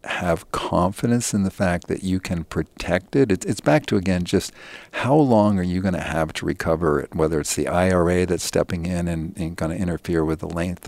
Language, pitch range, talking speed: English, 85-105 Hz, 215 wpm